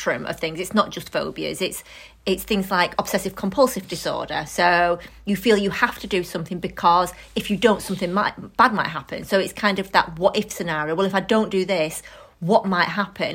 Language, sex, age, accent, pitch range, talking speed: English, female, 30-49, British, 175-205 Hz, 210 wpm